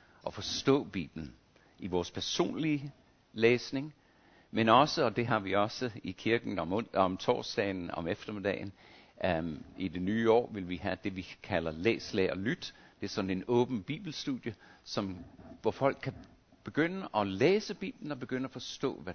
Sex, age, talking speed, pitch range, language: male, 60-79, 165 wpm, 90-130 Hz, Danish